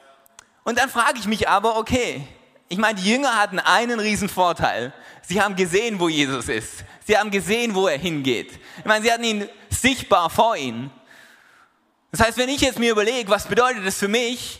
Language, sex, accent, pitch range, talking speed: German, male, German, 195-245 Hz, 190 wpm